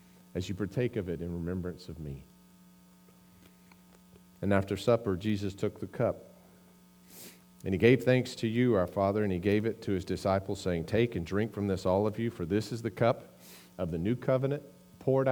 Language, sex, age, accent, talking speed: English, male, 40-59, American, 195 wpm